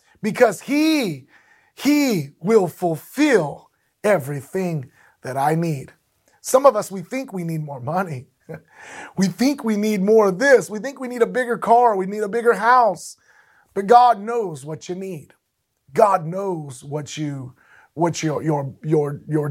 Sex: male